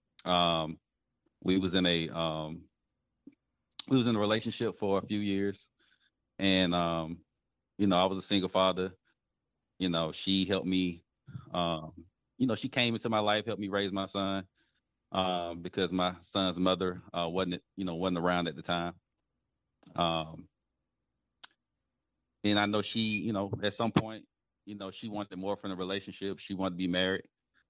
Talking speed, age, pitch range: 170 wpm, 30-49, 90-100 Hz